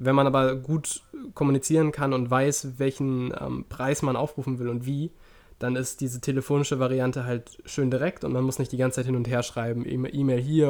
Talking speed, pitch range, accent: 210 wpm, 125-145 Hz, German